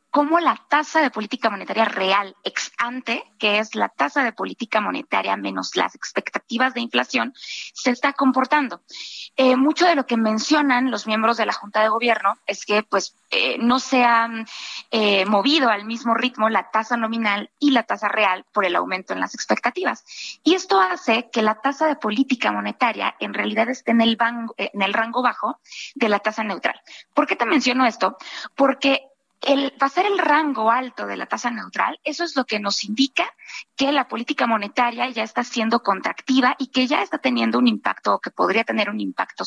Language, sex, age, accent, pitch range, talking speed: Spanish, female, 20-39, Mexican, 215-275 Hz, 195 wpm